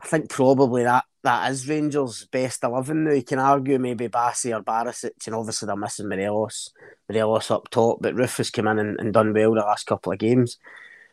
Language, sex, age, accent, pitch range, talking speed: English, male, 20-39, British, 115-135 Hz, 210 wpm